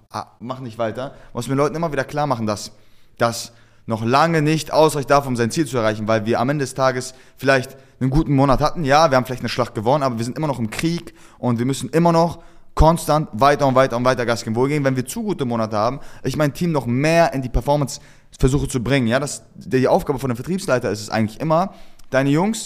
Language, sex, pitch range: German, male, 120-155 Hz